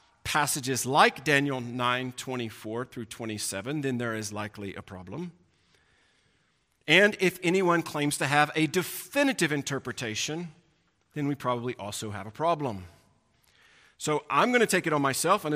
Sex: male